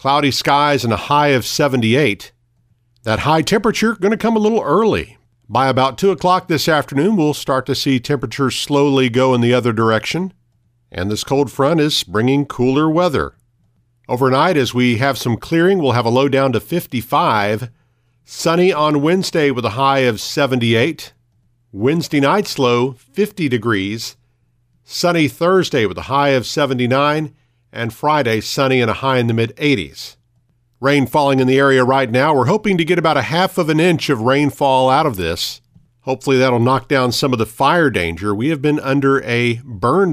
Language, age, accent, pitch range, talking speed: English, 50-69, American, 120-145 Hz, 180 wpm